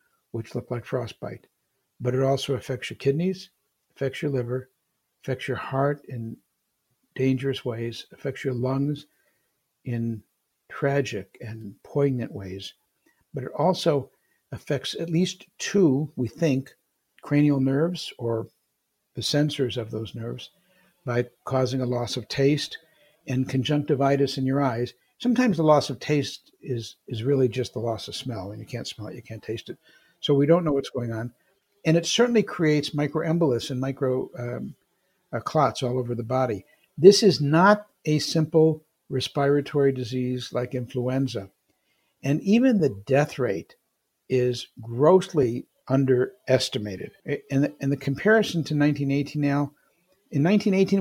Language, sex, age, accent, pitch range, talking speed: English, male, 60-79, American, 125-160 Hz, 150 wpm